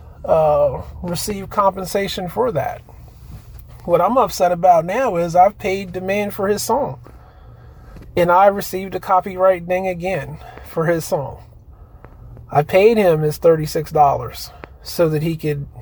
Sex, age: male, 30-49